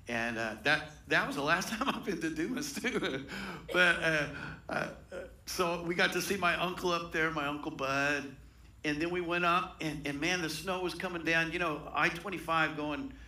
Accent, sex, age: American, male, 60-79